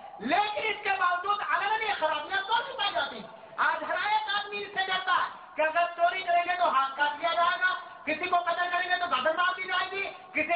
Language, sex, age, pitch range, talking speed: Urdu, male, 40-59, 300-370 Hz, 190 wpm